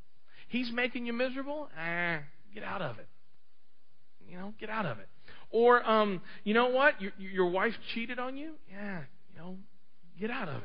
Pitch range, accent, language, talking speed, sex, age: 160-265 Hz, American, English, 180 wpm, male, 40-59